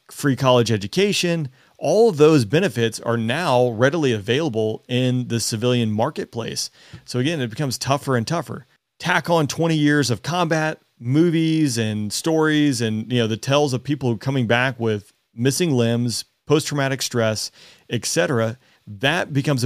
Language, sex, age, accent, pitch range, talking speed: English, male, 40-59, American, 115-140 Hz, 145 wpm